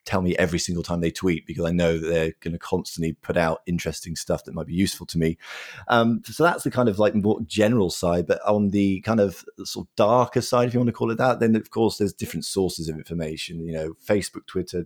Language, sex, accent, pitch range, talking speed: English, male, British, 85-100 Hz, 255 wpm